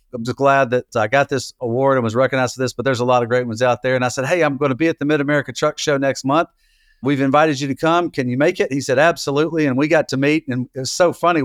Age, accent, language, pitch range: 50-69, American, English, 125-155 Hz